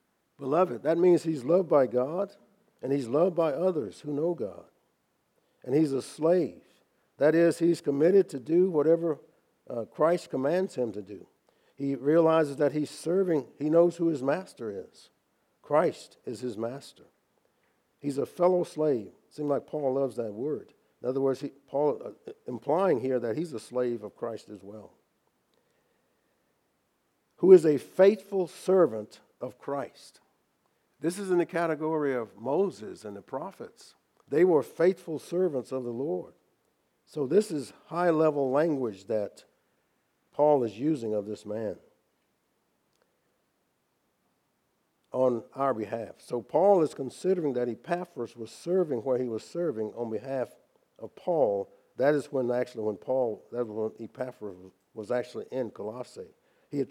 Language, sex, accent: English, male, American